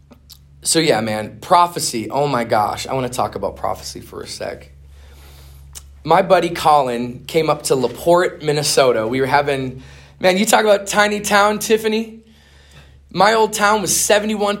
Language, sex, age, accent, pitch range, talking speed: English, male, 20-39, American, 140-210 Hz, 155 wpm